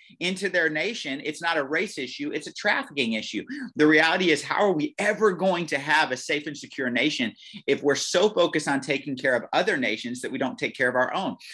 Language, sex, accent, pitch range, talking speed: English, male, American, 125-165 Hz, 235 wpm